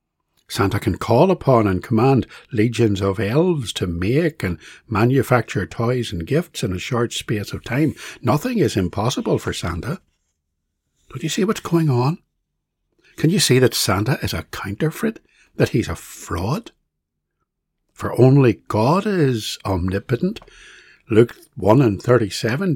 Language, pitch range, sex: English, 95-140 Hz, male